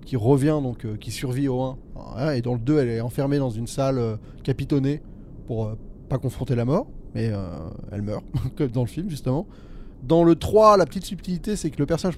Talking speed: 220 wpm